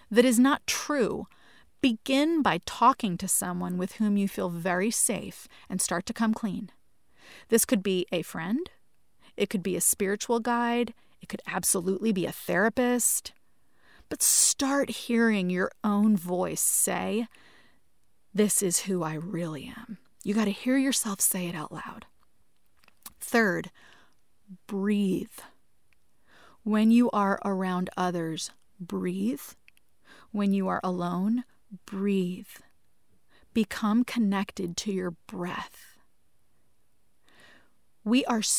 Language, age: English, 30-49